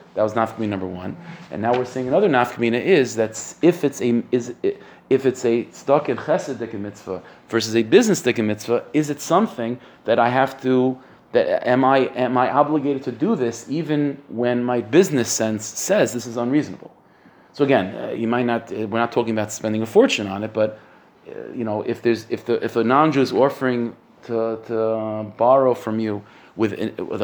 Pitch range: 110-130 Hz